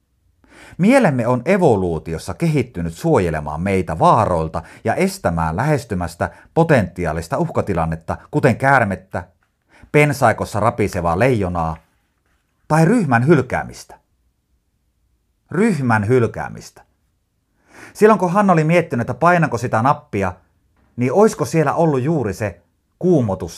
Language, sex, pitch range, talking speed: Finnish, male, 90-150 Hz, 95 wpm